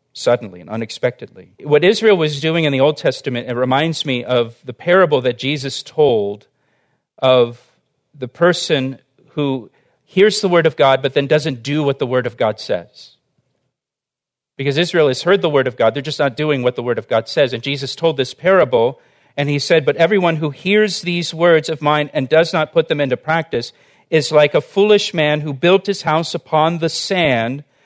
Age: 40-59